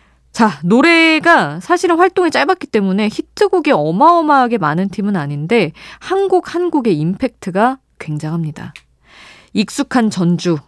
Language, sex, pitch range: Korean, female, 160-250 Hz